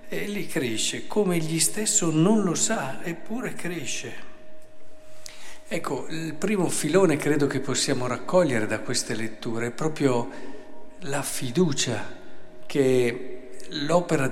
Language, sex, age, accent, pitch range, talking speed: Italian, male, 50-69, native, 125-160 Hz, 115 wpm